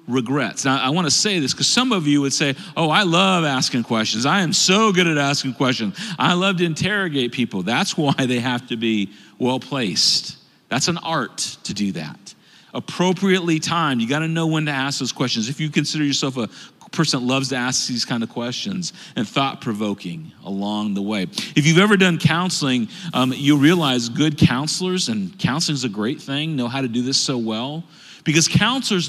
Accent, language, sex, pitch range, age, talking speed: American, English, male, 130-175 Hz, 40-59, 205 wpm